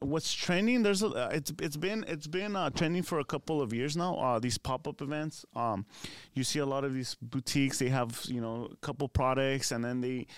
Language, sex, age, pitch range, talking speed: English, male, 20-39, 125-155 Hz, 230 wpm